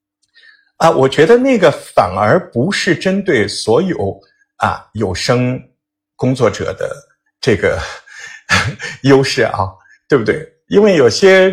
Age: 50-69